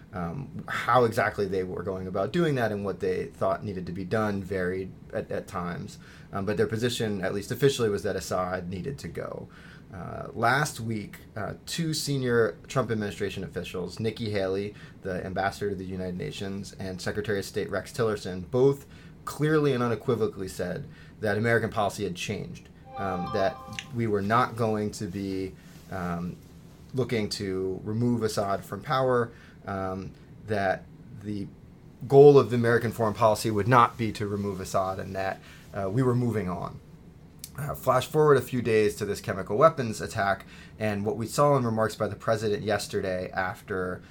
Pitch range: 95-120 Hz